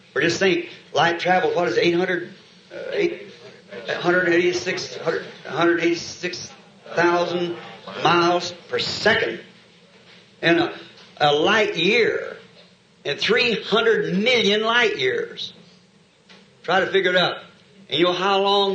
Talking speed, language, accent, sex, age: 115 wpm, English, American, male, 60-79